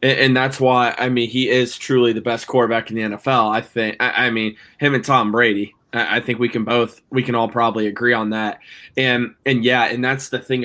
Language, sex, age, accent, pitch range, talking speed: English, male, 20-39, American, 115-130 Hz, 230 wpm